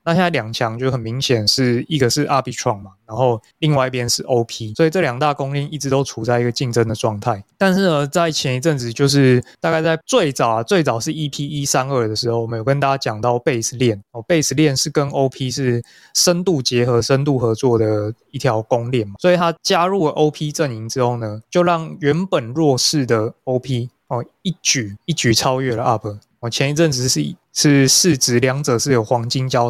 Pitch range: 120-150 Hz